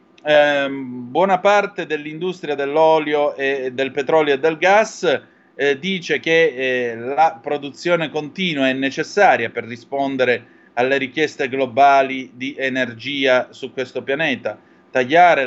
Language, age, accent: Italian, 30-49, native